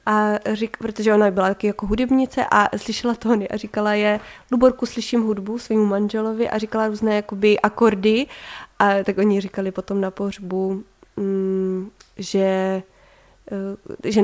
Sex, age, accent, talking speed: female, 20-39, native, 150 wpm